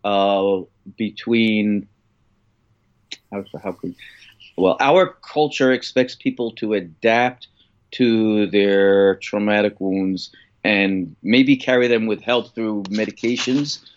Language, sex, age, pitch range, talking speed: English, male, 30-49, 105-125 Hz, 105 wpm